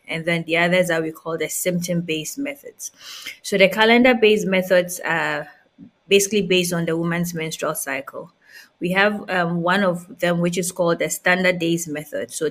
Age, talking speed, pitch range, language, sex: 20-39, 175 wpm, 170-200 Hz, English, female